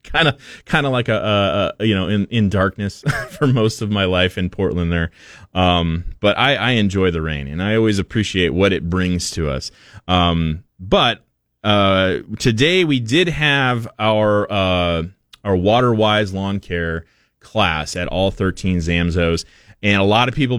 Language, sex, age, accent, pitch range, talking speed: English, male, 20-39, American, 85-110 Hz, 175 wpm